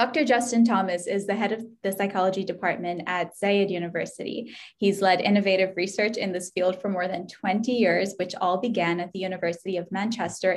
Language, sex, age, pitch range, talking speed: English, female, 10-29, 180-225 Hz, 185 wpm